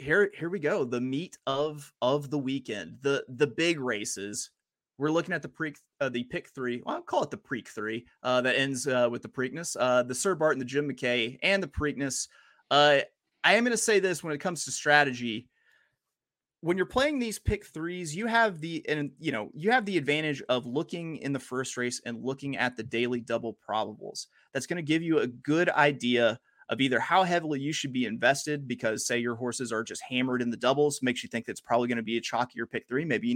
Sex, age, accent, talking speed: male, 30-49, American, 230 wpm